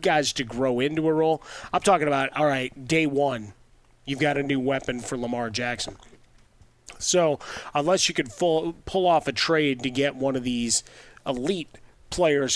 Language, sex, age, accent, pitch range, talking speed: English, male, 30-49, American, 125-150 Hz, 175 wpm